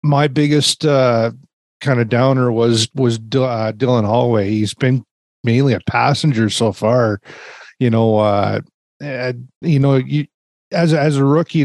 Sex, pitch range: male, 115-135 Hz